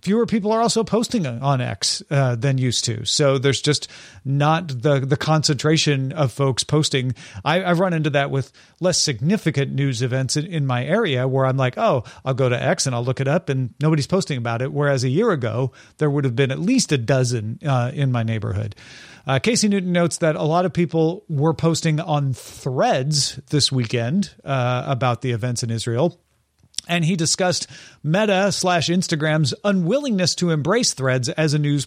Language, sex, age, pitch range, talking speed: English, male, 40-59, 130-175 Hz, 190 wpm